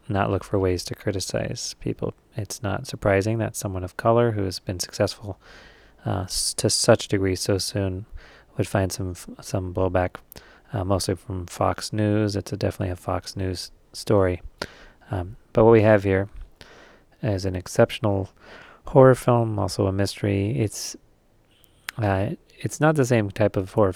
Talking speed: 165 wpm